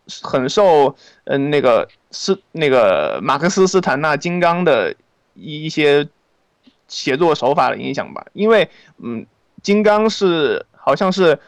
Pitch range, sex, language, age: 145-195 Hz, male, Chinese, 20-39